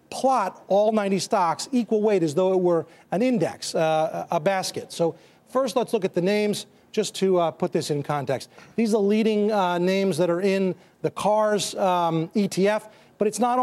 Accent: American